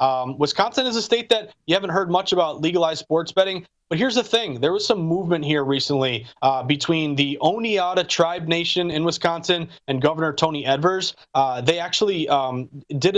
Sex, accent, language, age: male, American, English, 30-49